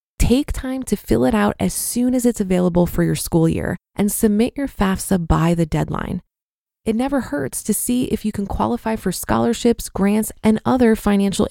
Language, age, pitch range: English, 20-39, 180-235 Hz